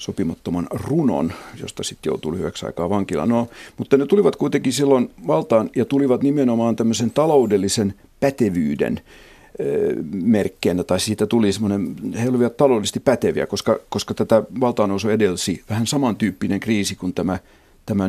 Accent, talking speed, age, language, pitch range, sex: native, 140 wpm, 50-69, Finnish, 105-140 Hz, male